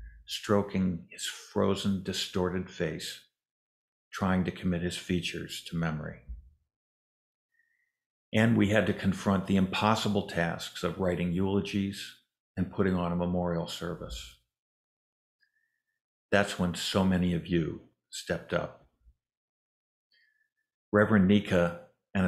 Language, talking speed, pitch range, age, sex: English, 110 wpm, 85-105 Hz, 50-69, male